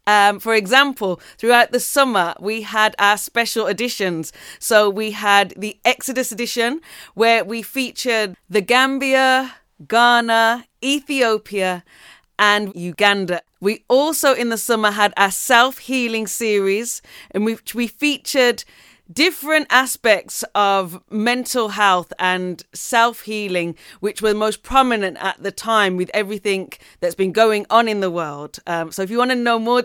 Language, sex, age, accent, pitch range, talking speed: English, female, 30-49, British, 195-240 Hz, 140 wpm